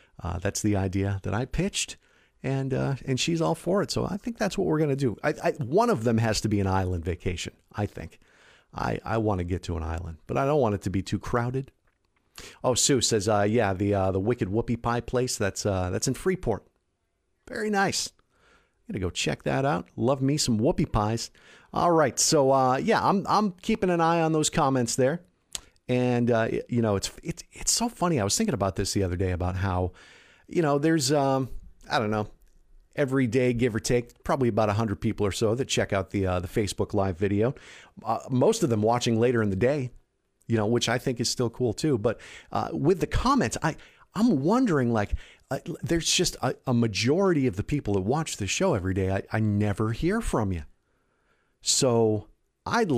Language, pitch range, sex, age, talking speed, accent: English, 100-140 Hz, male, 50-69, 220 wpm, American